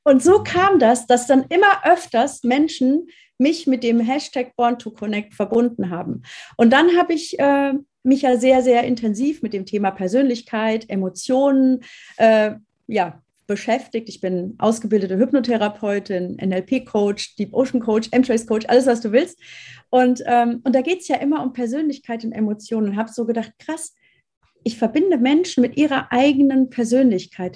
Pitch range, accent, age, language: 220-270 Hz, German, 30-49, German